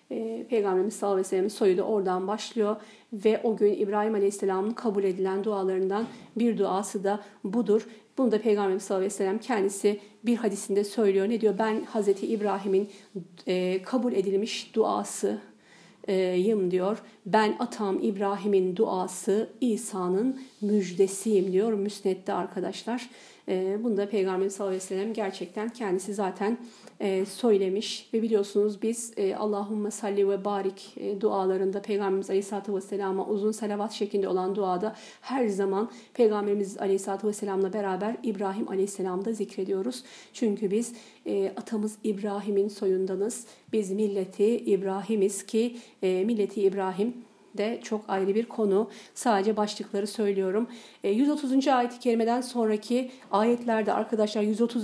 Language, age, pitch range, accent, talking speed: Turkish, 50-69, 195-225 Hz, native, 120 wpm